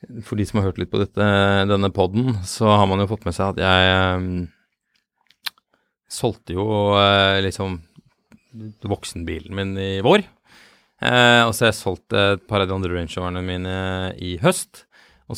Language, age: English, 20-39